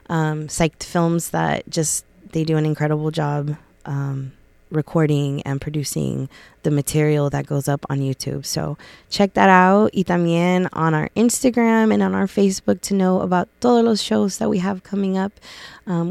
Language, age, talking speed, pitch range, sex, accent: English, 20-39, 170 wpm, 160-190 Hz, female, American